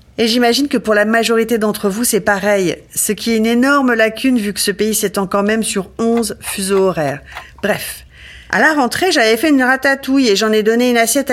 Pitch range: 200-245 Hz